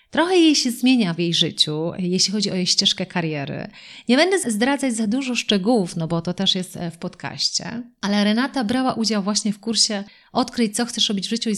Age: 30-49